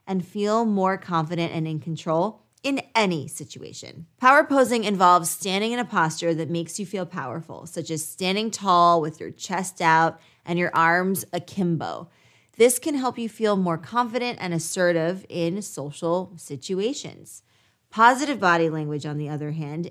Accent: American